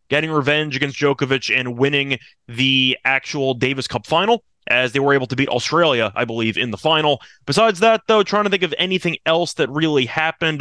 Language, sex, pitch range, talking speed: English, male, 135-180 Hz, 200 wpm